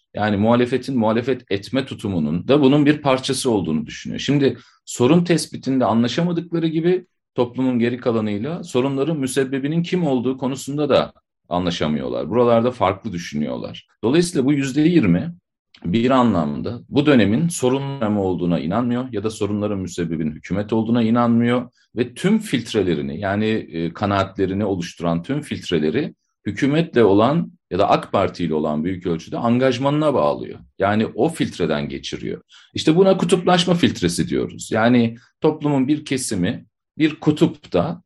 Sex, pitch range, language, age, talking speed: male, 105-150 Hz, Turkish, 40-59, 130 wpm